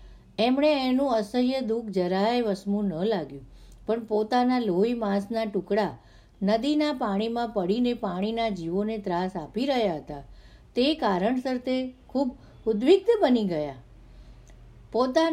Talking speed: 105 wpm